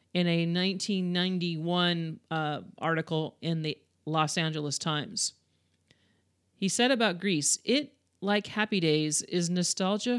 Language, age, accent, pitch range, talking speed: English, 40-59, American, 160-205 Hz, 120 wpm